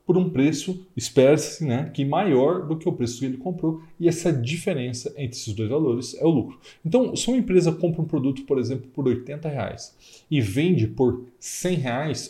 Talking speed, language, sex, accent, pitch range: 200 wpm, Portuguese, male, Brazilian, 125-160 Hz